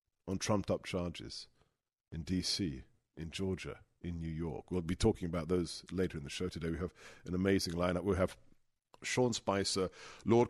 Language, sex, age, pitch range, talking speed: English, male, 50-69, 90-115 Hz, 170 wpm